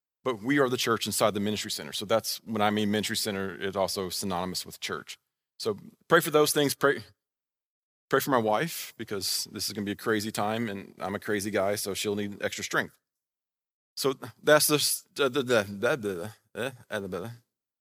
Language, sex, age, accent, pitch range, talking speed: English, male, 40-59, American, 105-135 Hz, 180 wpm